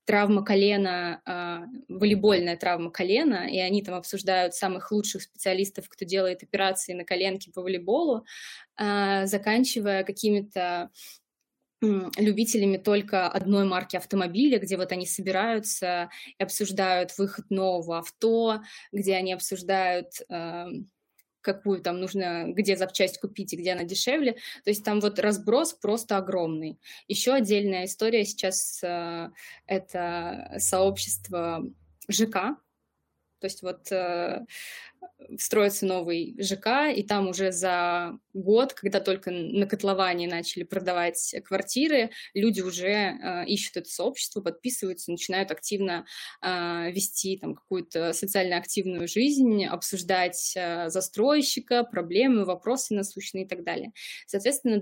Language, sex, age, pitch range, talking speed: Russian, female, 20-39, 180-210 Hz, 120 wpm